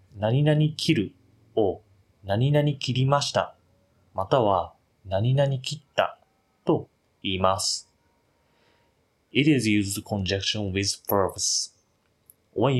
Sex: male